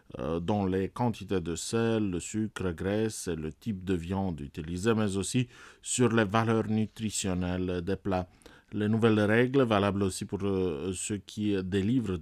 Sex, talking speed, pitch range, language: male, 150 wpm, 95-120 Hz, English